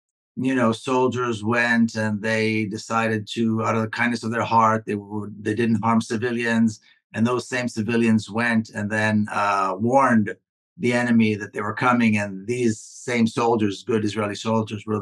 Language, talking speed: English, 175 wpm